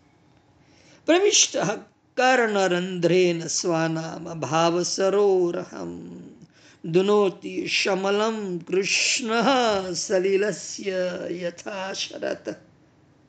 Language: Gujarati